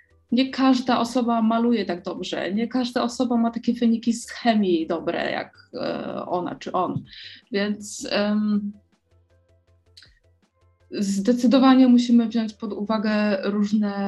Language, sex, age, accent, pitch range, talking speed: Polish, female, 20-39, native, 180-230 Hz, 110 wpm